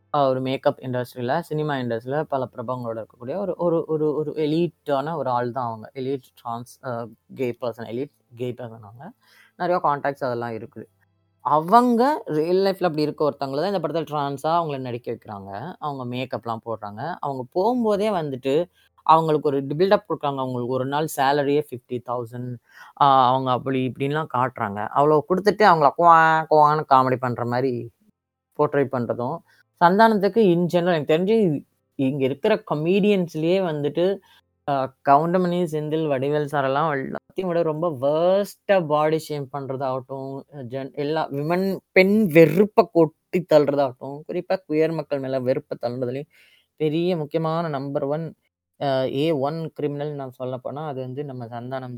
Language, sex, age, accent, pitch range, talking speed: Tamil, female, 20-39, native, 130-165 Hz, 140 wpm